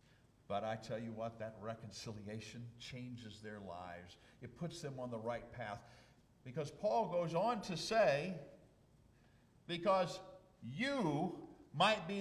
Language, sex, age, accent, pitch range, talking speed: English, male, 50-69, American, 100-140 Hz, 135 wpm